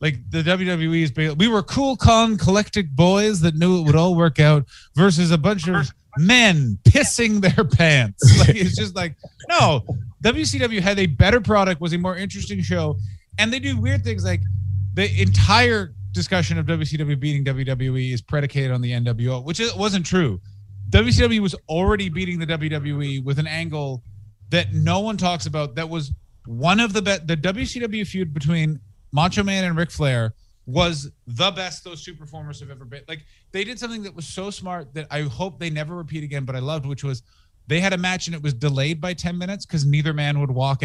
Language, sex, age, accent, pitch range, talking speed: English, male, 30-49, American, 130-180 Hz, 195 wpm